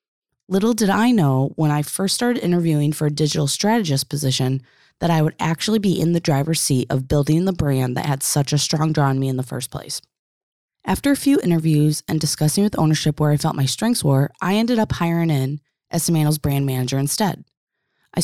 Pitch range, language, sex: 145-190 Hz, English, female